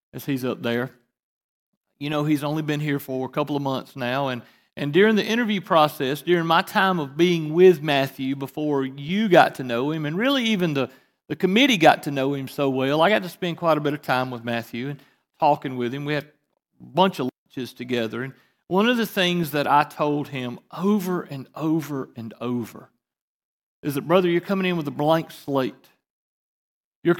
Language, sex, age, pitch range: English, male, 40-59, 140-190 Hz